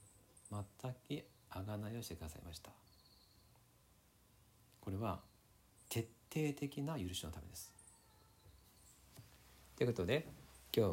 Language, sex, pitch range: Japanese, male, 85-120 Hz